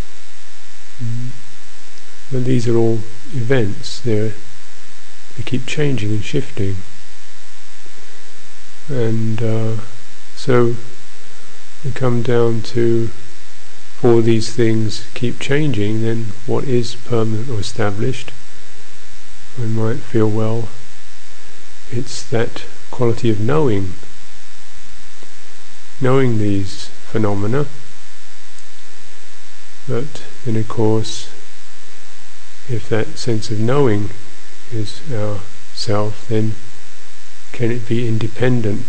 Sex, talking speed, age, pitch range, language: male, 90 wpm, 50-69, 105-115 Hz, English